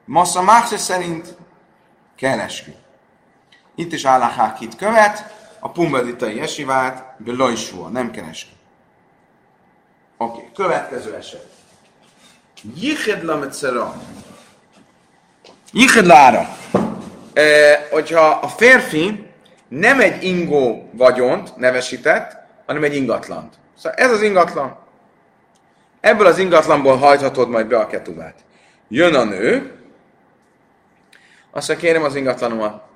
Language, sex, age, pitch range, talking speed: Hungarian, male, 30-49, 120-180 Hz, 95 wpm